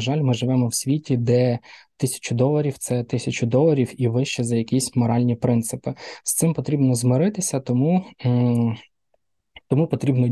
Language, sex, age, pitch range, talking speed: Ukrainian, male, 20-39, 120-135 Hz, 145 wpm